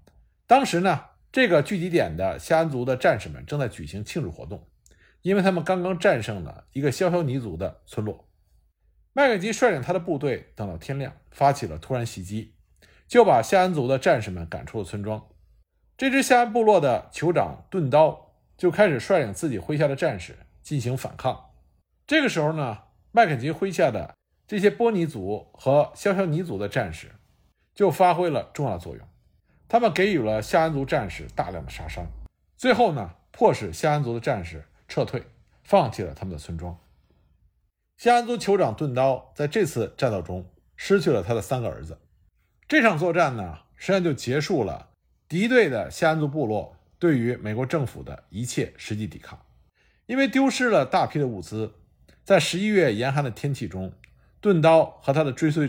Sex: male